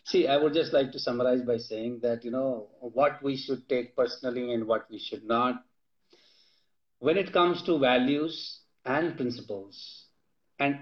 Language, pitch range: Hindi, 130-175 Hz